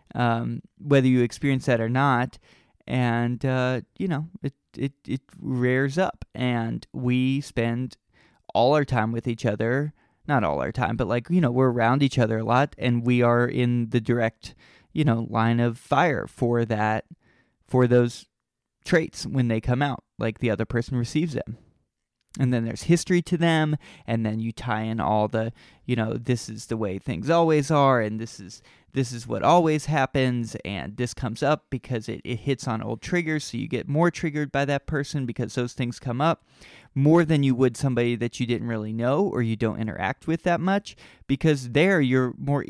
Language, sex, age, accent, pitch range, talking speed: English, male, 20-39, American, 115-140 Hz, 195 wpm